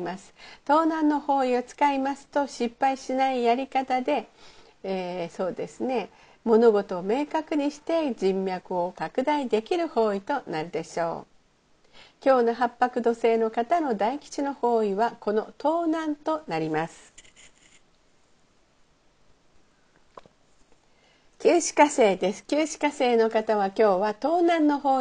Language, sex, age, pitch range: Japanese, female, 50-69, 210-285 Hz